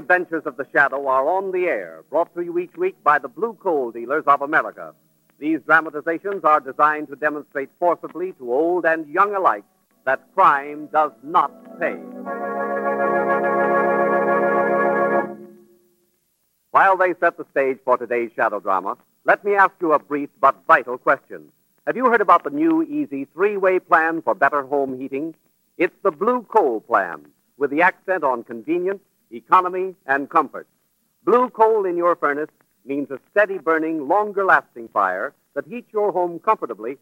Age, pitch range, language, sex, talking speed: 50-69, 140-195 Hz, English, male, 160 wpm